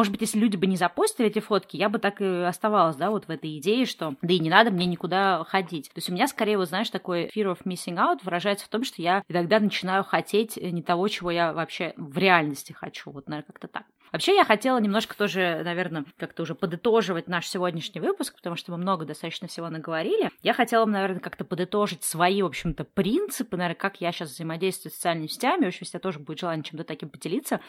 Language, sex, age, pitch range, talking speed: Russian, female, 20-39, 170-205 Hz, 225 wpm